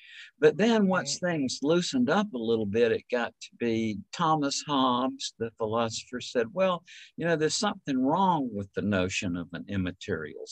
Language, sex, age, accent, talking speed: English, male, 60-79, American, 170 wpm